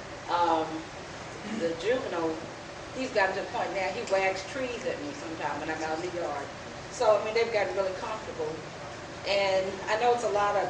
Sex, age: female, 40-59